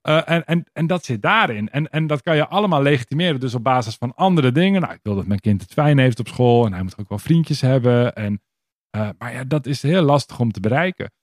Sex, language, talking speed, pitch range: male, Dutch, 260 wpm, 115-155 Hz